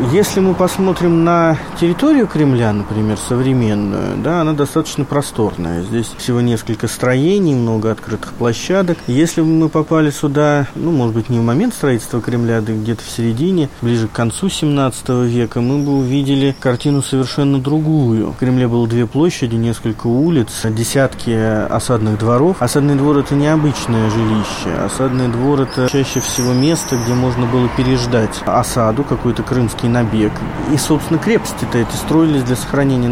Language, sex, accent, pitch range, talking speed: Russian, male, native, 115-150 Hz, 150 wpm